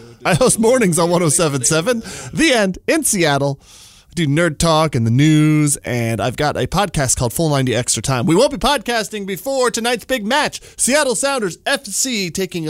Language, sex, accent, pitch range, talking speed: English, male, American, 120-190 Hz, 180 wpm